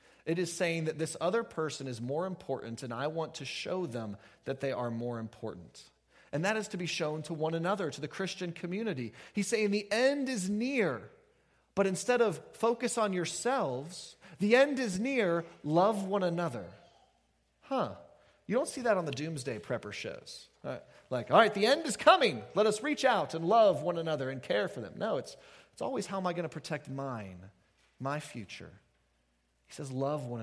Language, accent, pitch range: English, American, 130-200 Hz